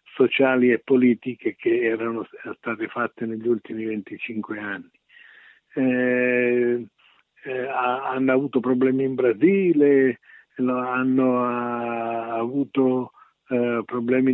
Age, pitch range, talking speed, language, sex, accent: 50-69, 120-140 Hz, 90 wpm, Italian, male, native